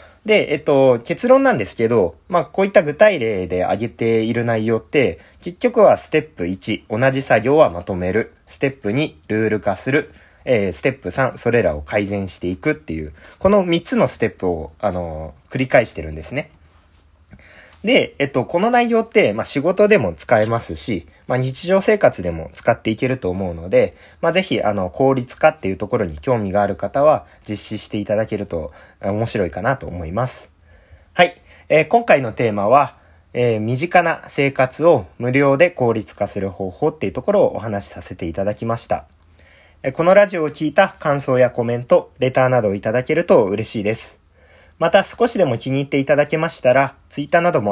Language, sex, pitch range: Japanese, male, 95-150 Hz